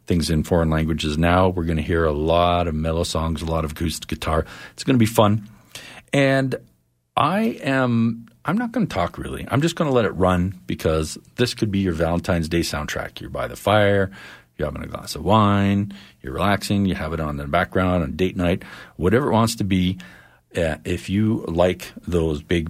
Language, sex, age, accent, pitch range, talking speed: English, male, 50-69, American, 80-100 Hz, 215 wpm